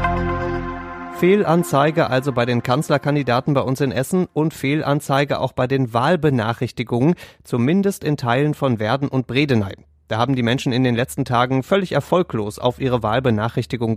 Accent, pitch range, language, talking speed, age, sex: German, 115-140 Hz, German, 150 wpm, 30-49, male